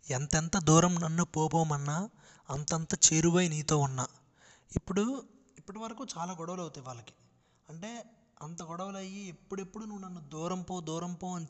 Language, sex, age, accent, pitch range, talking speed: Telugu, male, 20-39, native, 160-195 Hz, 140 wpm